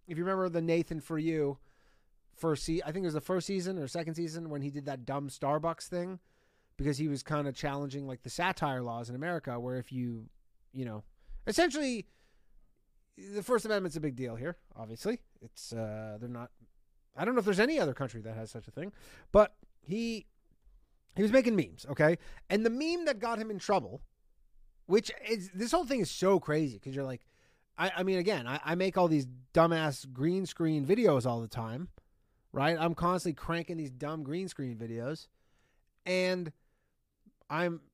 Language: English